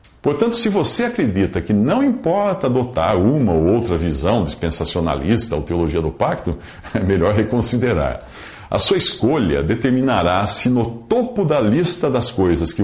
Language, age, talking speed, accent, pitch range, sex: English, 50-69, 150 wpm, Brazilian, 90-140 Hz, male